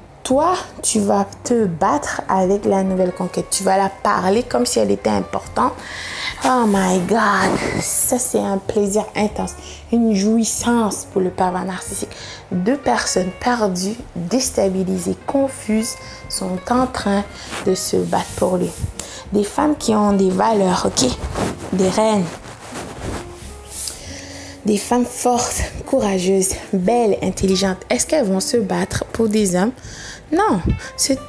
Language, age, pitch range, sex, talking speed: French, 20-39, 190-245 Hz, female, 135 wpm